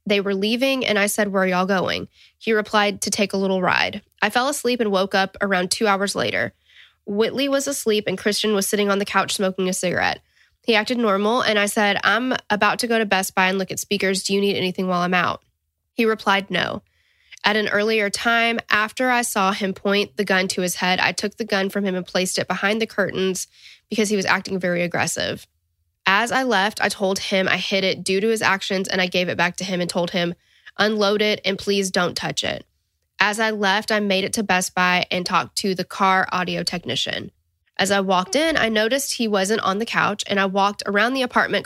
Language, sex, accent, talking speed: English, female, American, 235 wpm